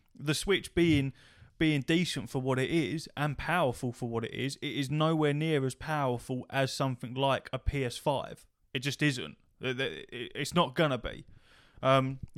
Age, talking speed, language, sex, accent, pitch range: 20-39, 170 wpm, English, male, British, 125-155 Hz